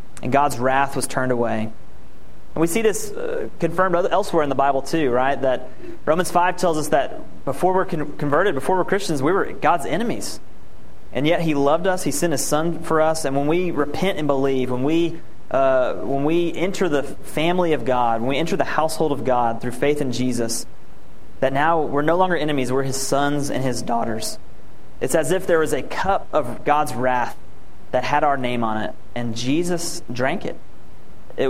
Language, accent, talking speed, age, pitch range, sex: English, American, 200 wpm, 30-49, 130-170 Hz, male